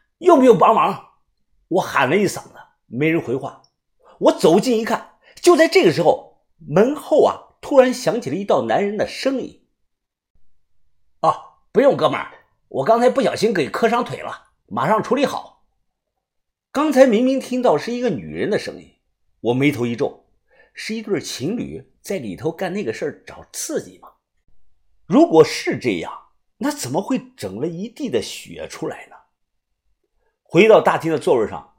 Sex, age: male, 50-69